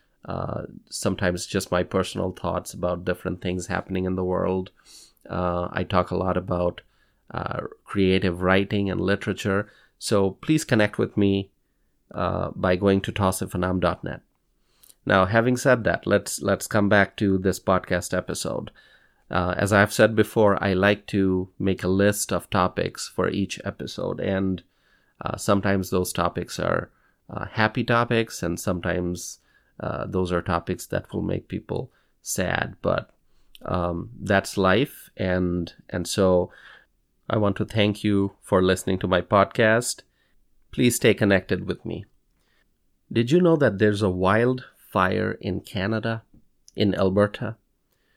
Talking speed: 145 wpm